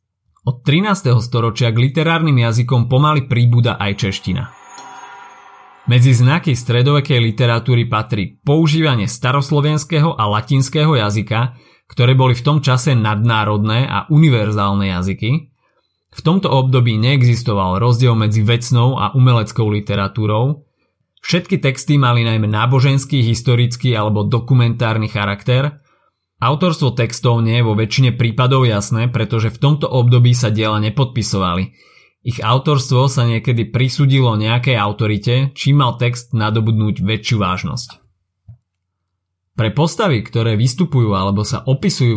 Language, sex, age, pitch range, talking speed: Slovak, male, 30-49, 105-130 Hz, 120 wpm